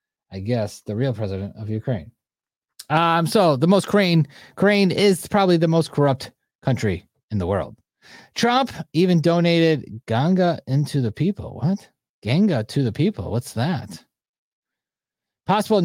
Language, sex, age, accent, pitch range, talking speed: English, male, 30-49, American, 120-175 Hz, 140 wpm